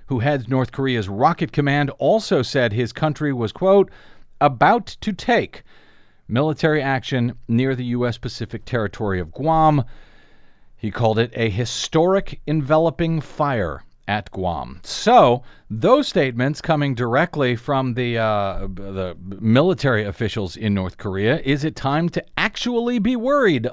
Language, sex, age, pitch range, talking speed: English, male, 40-59, 120-170 Hz, 135 wpm